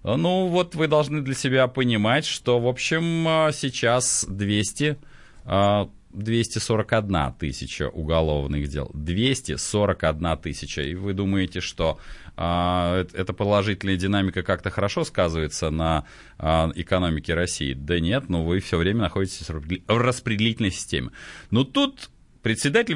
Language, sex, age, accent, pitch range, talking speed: Russian, male, 30-49, native, 95-135 Hz, 110 wpm